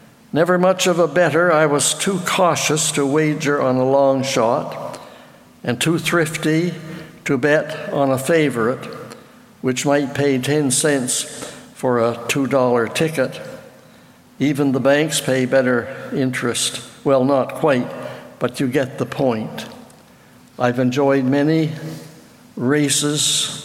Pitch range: 135-165 Hz